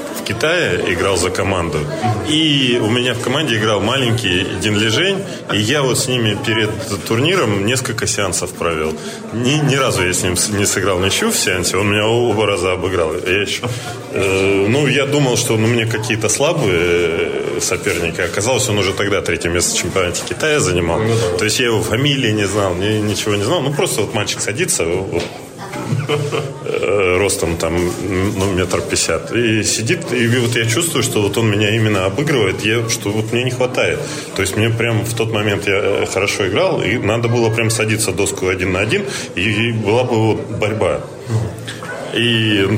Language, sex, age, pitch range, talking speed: Russian, male, 20-39, 100-120 Hz, 175 wpm